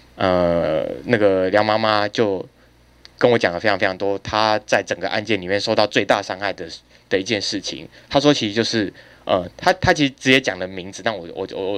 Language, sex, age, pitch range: Chinese, male, 20-39, 95-120 Hz